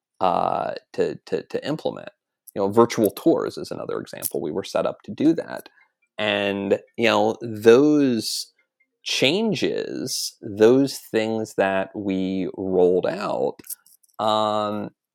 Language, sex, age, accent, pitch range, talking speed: English, male, 30-49, American, 100-115 Hz, 125 wpm